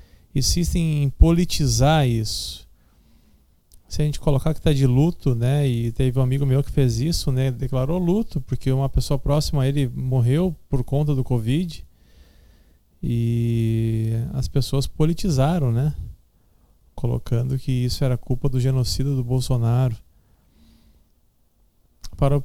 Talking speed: 135 wpm